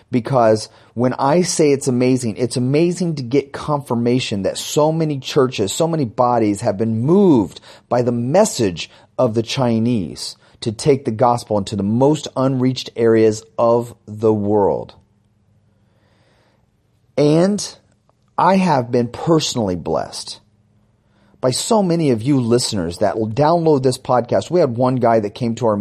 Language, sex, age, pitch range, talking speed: English, male, 30-49, 110-140 Hz, 150 wpm